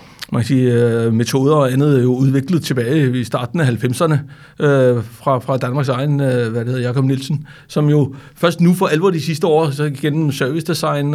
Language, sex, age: Danish, male, 60-79